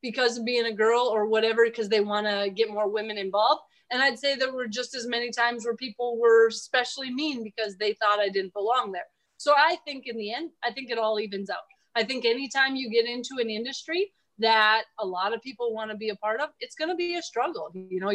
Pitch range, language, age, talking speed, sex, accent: 215-265 Hz, English, 30-49, 250 wpm, female, American